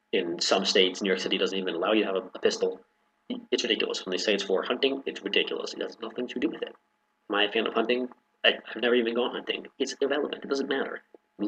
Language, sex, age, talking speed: English, male, 30-49, 240 wpm